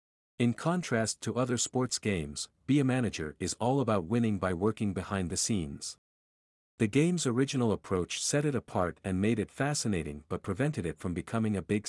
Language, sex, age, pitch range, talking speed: English, male, 50-69, 90-125 Hz, 180 wpm